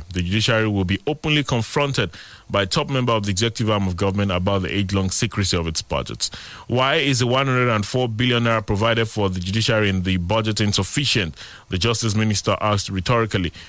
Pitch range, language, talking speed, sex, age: 95-120 Hz, English, 180 wpm, male, 30-49